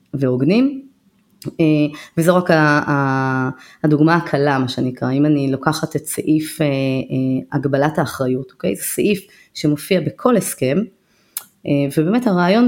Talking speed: 105 wpm